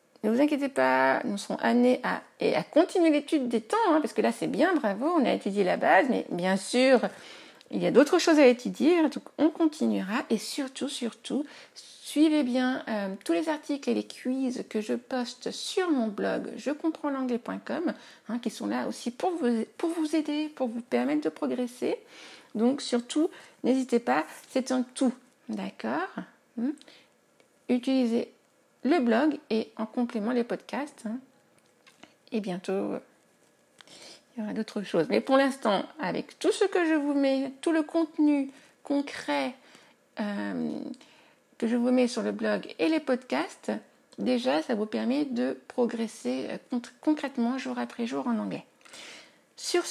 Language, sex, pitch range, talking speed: French, female, 235-310 Hz, 160 wpm